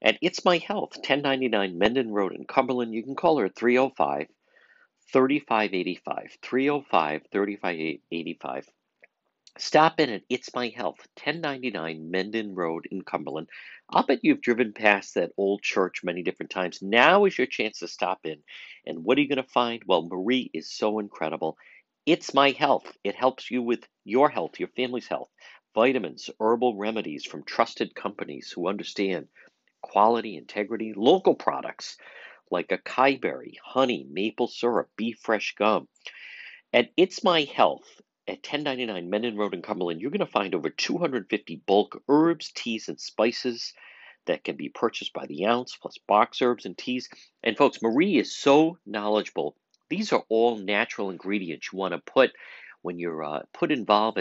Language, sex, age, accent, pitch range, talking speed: English, male, 50-69, American, 100-135 Hz, 160 wpm